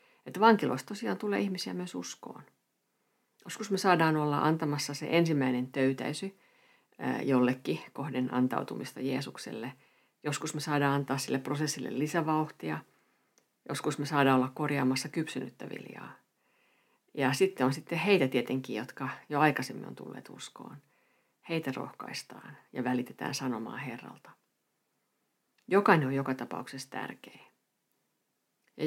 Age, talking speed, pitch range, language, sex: 50-69, 120 wpm, 130-155 Hz, Finnish, female